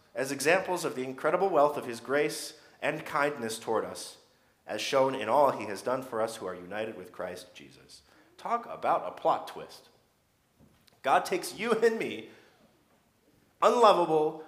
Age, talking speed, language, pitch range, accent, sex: 40-59, 160 wpm, English, 130-200 Hz, American, male